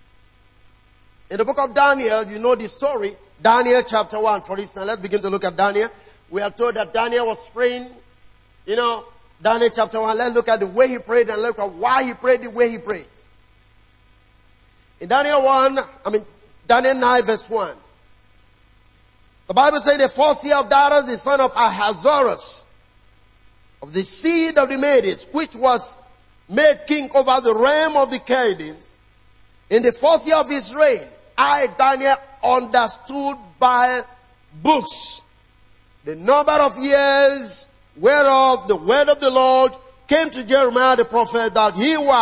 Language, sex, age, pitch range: English, male, 50-69, 165-275 Hz